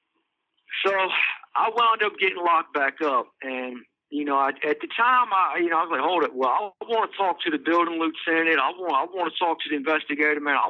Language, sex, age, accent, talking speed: English, male, 50-69, American, 230 wpm